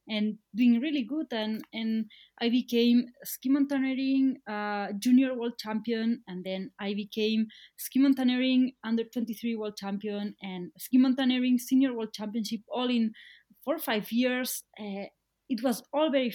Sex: female